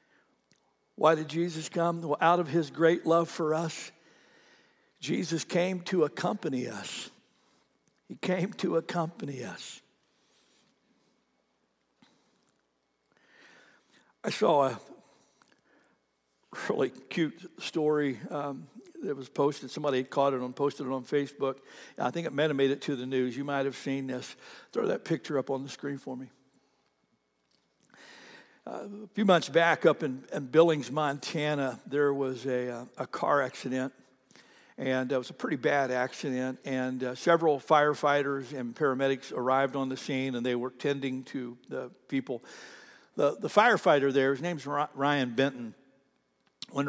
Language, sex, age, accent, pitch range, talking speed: English, male, 60-79, American, 130-155 Hz, 145 wpm